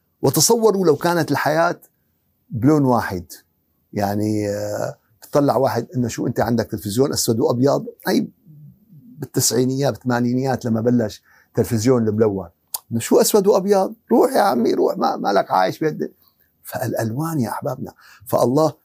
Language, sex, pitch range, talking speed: Arabic, male, 115-160 Hz, 125 wpm